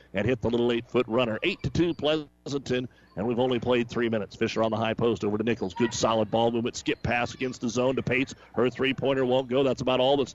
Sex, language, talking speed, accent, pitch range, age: male, English, 250 wpm, American, 110-130 Hz, 50-69